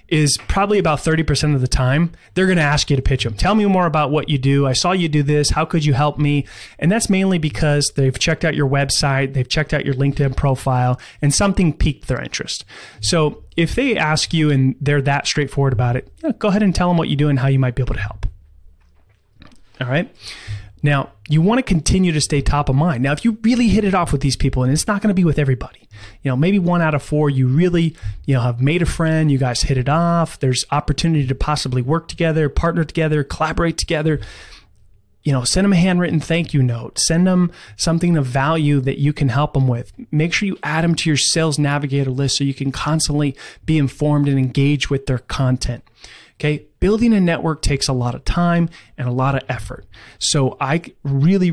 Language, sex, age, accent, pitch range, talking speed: English, male, 30-49, American, 130-165 Hz, 230 wpm